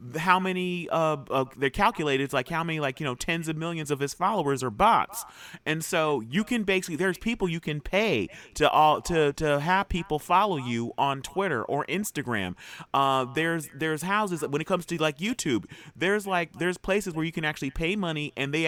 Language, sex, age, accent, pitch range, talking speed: English, male, 30-49, American, 135-180 Hz, 210 wpm